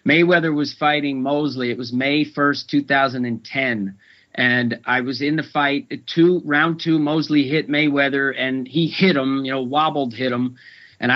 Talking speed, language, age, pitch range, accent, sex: 165 wpm, English, 40-59, 125-150 Hz, American, male